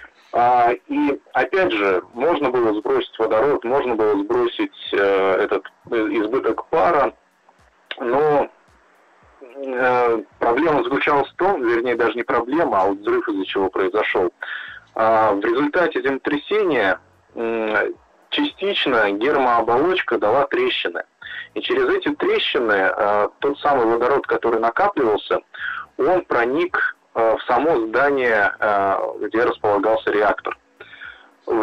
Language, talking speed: Russian, 100 wpm